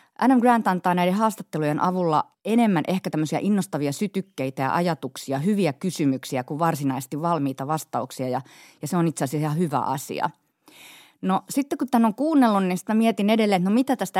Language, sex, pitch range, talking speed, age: Finnish, female, 140-185 Hz, 180 wpm, 30-49